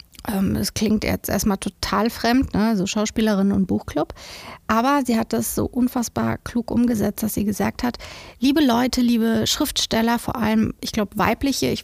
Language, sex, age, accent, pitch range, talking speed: German, female, 30-49, German, 210-250 Hz, 170 wpm